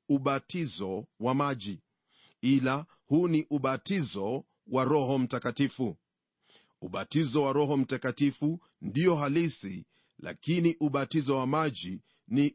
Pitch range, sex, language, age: 125-150 Hz, male, Swahili, 40-59